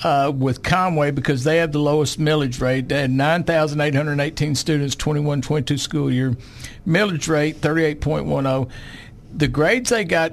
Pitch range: 130-165 Hz